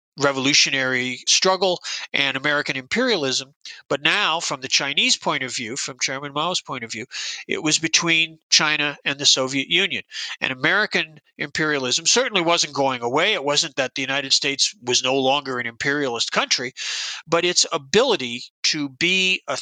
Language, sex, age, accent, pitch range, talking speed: English, male, 40-59, American, 135-170 Hz, 160 wpm